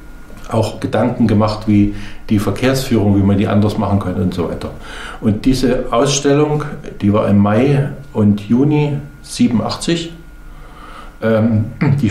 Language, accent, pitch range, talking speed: German, German, 105-135 Hz, 135 wpm